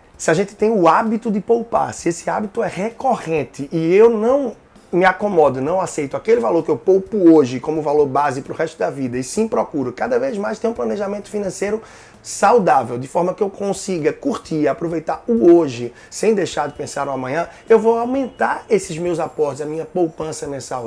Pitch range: 140-190 Hz